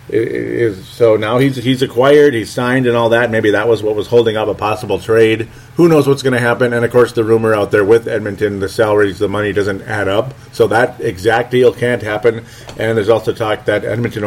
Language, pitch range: English, 105-130 Hz